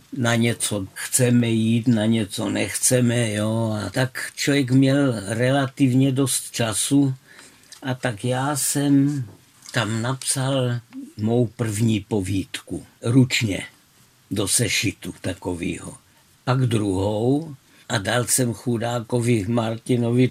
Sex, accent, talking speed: male, native, 105 wpm